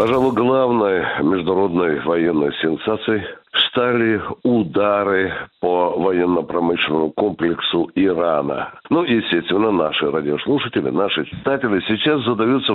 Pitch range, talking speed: 105-165 Hz, 90 wpm